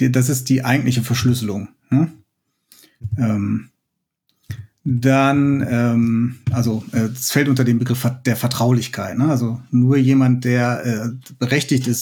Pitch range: 120-145 Hz